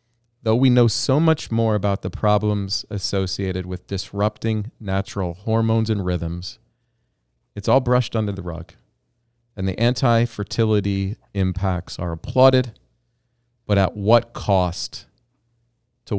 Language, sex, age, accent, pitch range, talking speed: English, male, 40-59, American, 95-120 Hz, 120 wpm